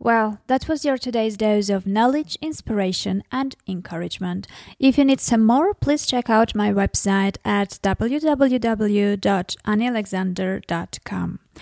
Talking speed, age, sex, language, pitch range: 120 wpm, 20-39, female, English, 190-240 Hz